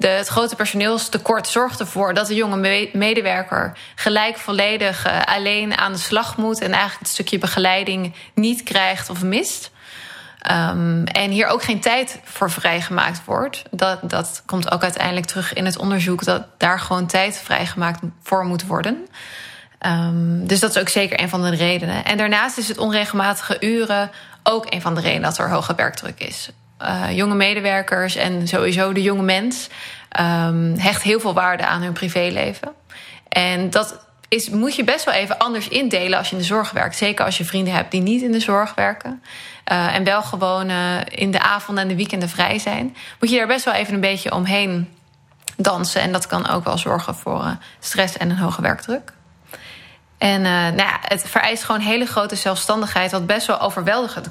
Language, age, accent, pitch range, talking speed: Dutch, 20-39, Dutch, 185-215 Hz, 185 wpm